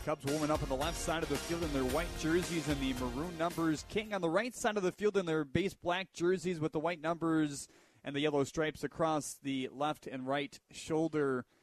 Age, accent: 30-49, American